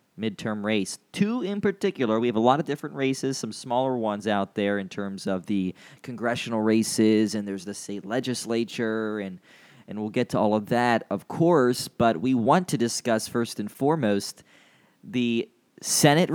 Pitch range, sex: 115-140 Hz, male